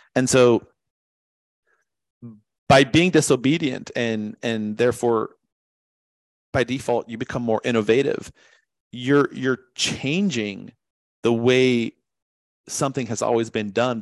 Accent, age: American, 40-59